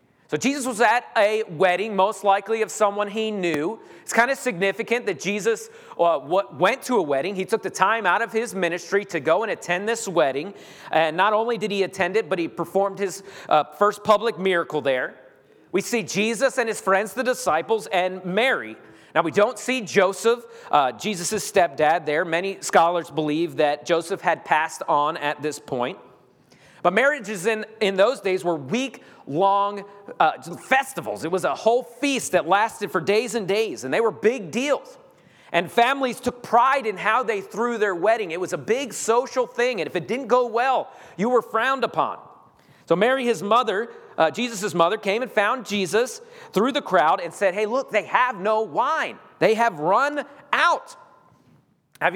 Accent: American